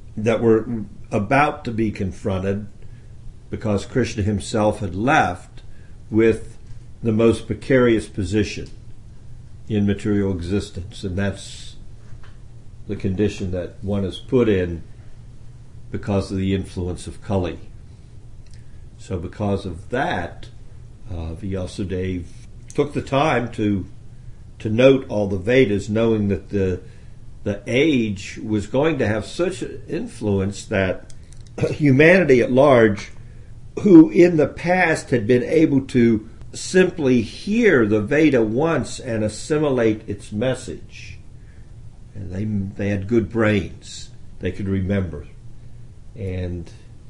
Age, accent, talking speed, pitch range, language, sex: 60-79, American, 115 wpm, 100-120 Hz, English, male